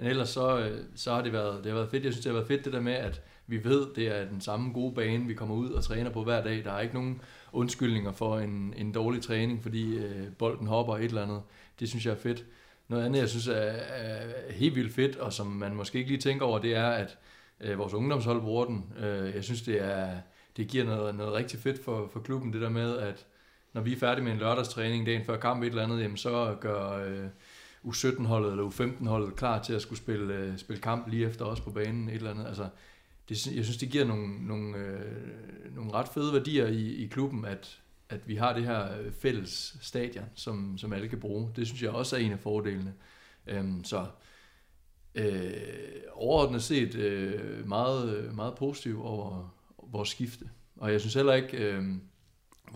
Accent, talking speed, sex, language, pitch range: native, 215 wpm, male, Danish, 105-120 Hz